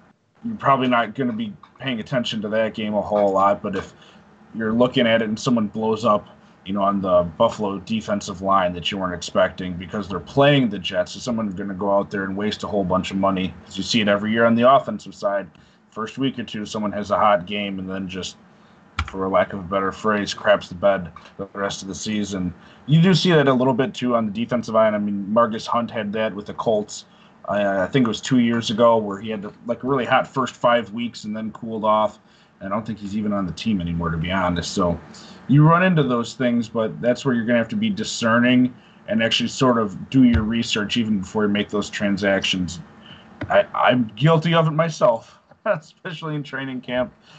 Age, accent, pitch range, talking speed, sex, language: 20-39, American, 100-130 Hz, 230 wpm, male, English